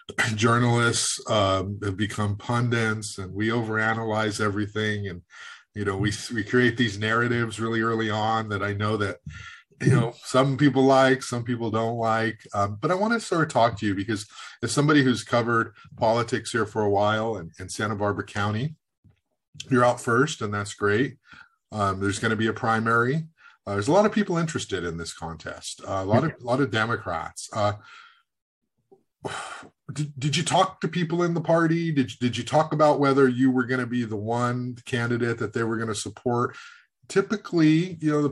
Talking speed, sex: 195 wpm, male